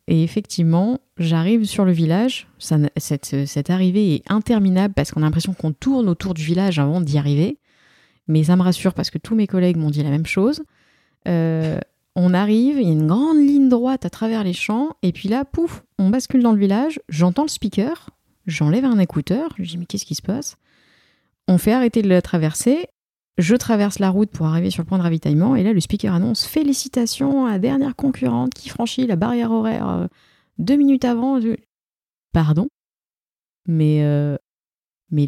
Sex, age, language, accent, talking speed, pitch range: female, 30-49, French, French, 195 wpm, 165-240 Hz